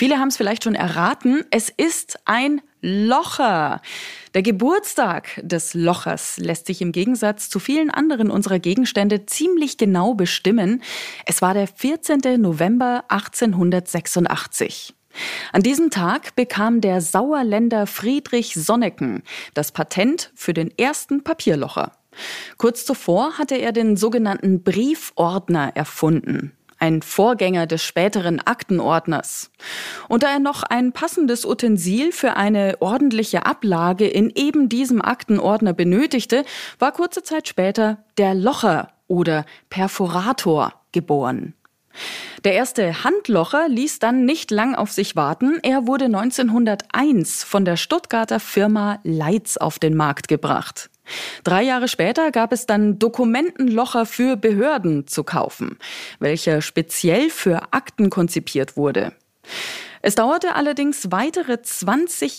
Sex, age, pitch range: female, 30-49, 180-255 Hz